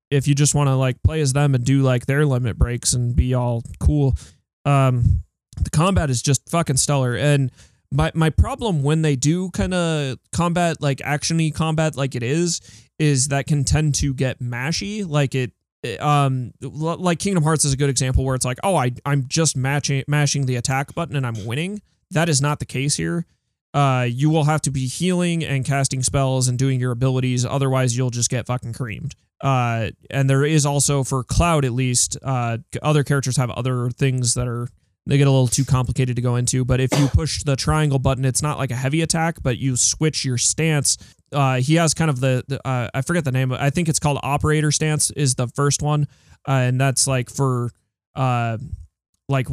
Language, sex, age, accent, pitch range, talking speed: English, male, 20-39, American, 125-150 Hz, 210 wpm